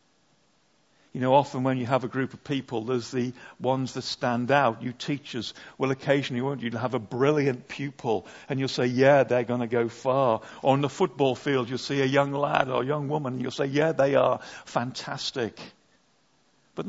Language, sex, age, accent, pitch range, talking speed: English, male, 50-69, British, 130-165 Hz, 200 wpm